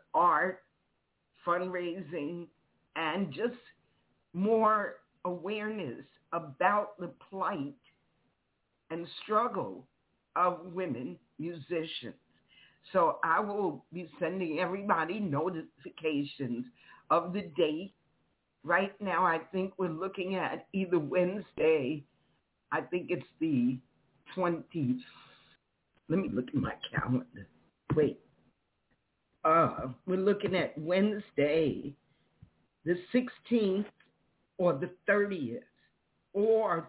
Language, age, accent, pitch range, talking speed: English, 50-69, American, 165-210 Hz, 90 wpm